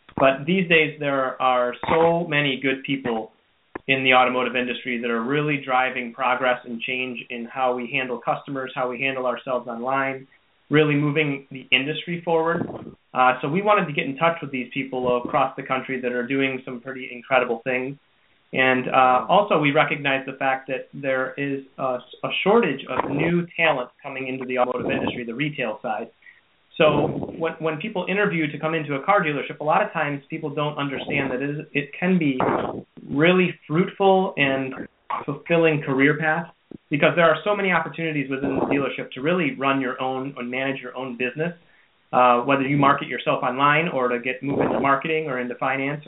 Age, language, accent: 30-49, English, American